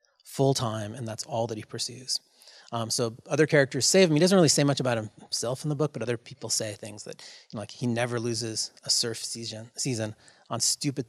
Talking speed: 205 wpm